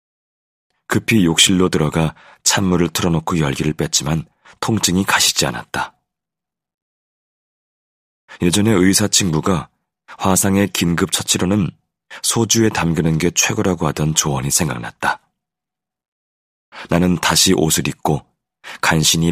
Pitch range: 80-100 Hz